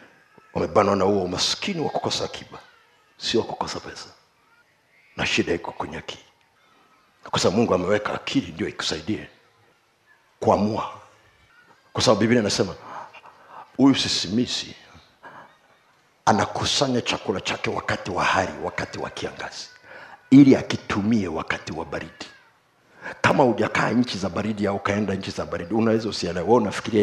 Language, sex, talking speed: Swahili, male, 125 wpm